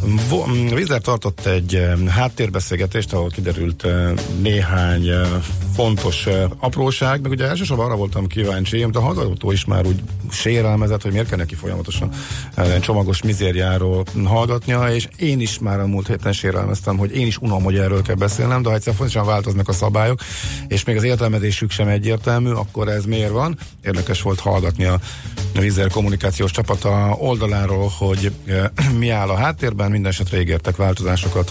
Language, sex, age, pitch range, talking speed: Hungarian, male, 50-69, 95-110 Hz, 150 wpm